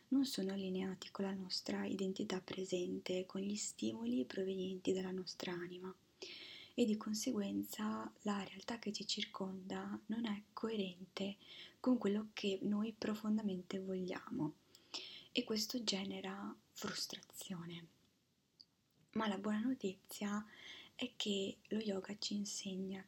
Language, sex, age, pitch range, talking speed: Italian, female, 20-39, 185-215 Hz, 120 wpm